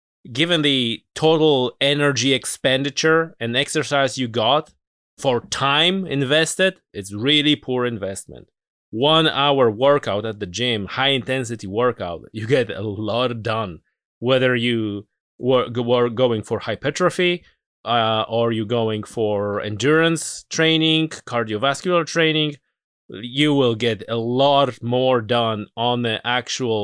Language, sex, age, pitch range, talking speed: English, male, 30-49, 110-145 Hz, 125 wpm